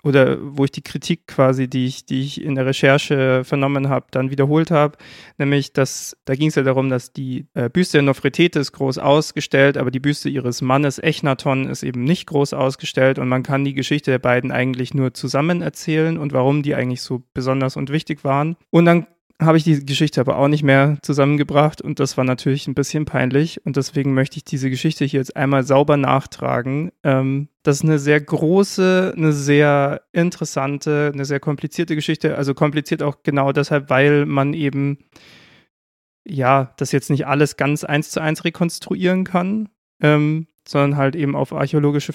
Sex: male